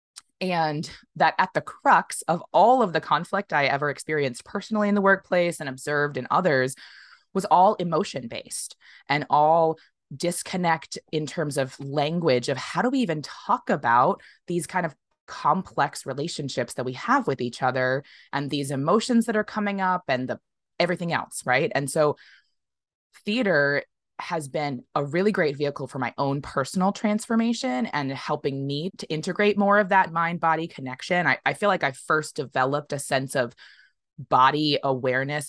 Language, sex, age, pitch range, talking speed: English, female, 20-39, 135-190 Hz, 165 wpm